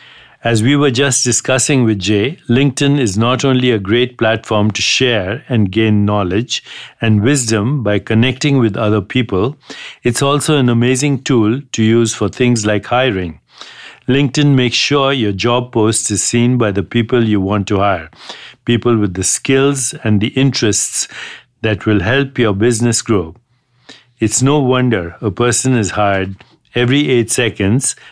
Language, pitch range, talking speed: English, 105-130 Hz, 160 wpm